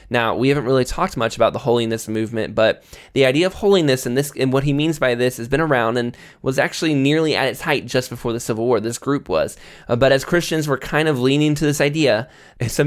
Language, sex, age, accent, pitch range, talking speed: English, male, 20-39, American, 120-150 Hz, 245 wpm